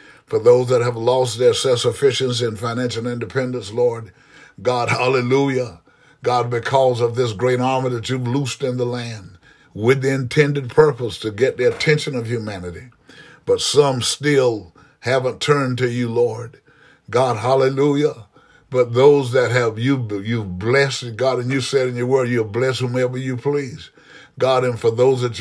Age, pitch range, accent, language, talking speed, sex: 60-79, 120-140 Hz, American, English, 165 wpm, male